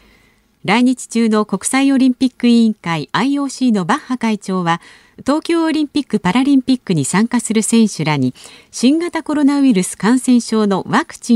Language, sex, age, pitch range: Japanese, female, 50-69, 175-260 Hz